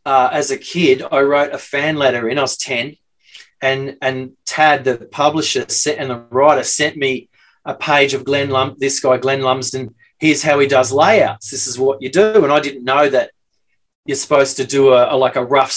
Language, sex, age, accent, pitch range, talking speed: English, male, 30-49, Australian, 135-170 Hz, 215 wpm